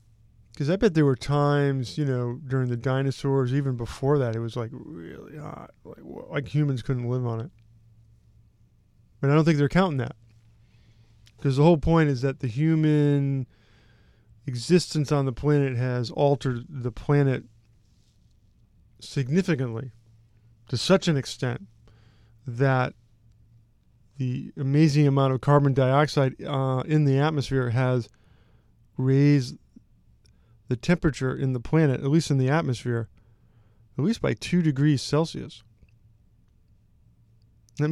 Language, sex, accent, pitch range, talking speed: English, male, American, 115-145 Hz, 135 wpm